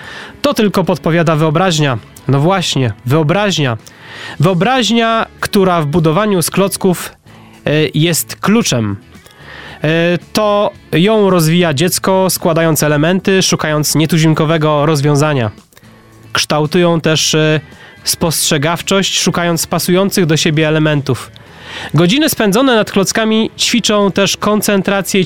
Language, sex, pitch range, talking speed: Polish, male, 150-195 Hz, 95 wpm